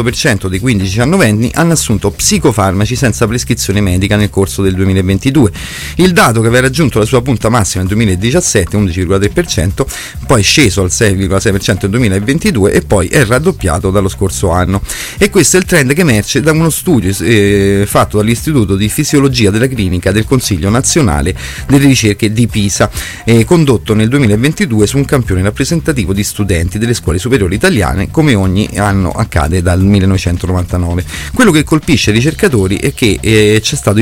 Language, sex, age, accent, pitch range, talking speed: Italian, male, 30-49, native, 95-130 Hz, 170 wpm